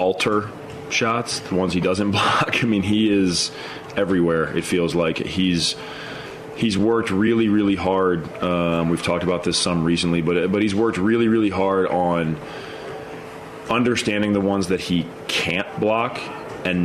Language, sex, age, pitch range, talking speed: English, male, 30-49, 80-95 Hz, 155 wpm